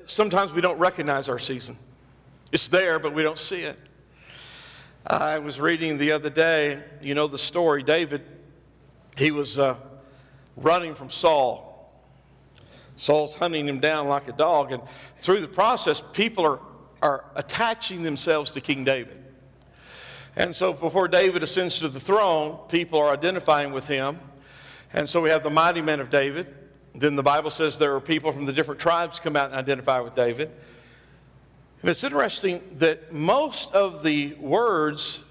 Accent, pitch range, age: American, 140-175 Hz, 50-69